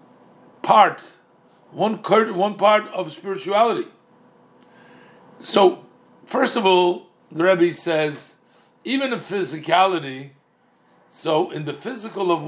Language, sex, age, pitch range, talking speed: English, male, 50-69, 160-220 Hz, 95 wpm